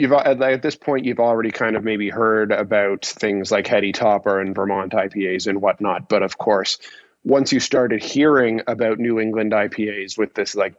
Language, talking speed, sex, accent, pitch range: English, 190 wpm, male, American, 100-125 Hz